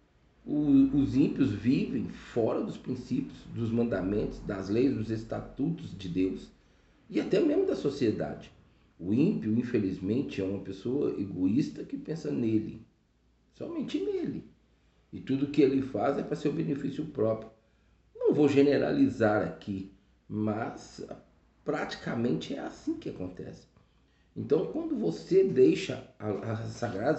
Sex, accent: male, Brazilian